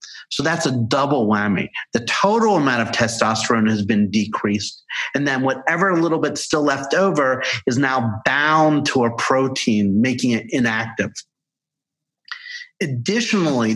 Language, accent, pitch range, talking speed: English, American, 115-145 Hz, 135 wpm